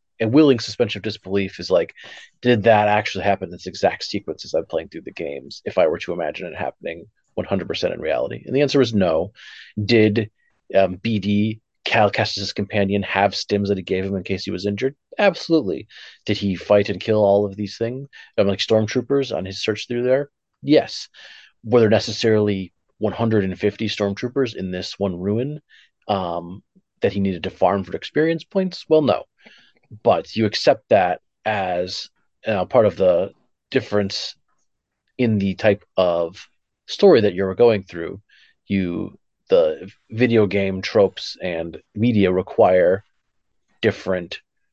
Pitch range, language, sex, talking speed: 100-125 Hz, English, male, 160 wpm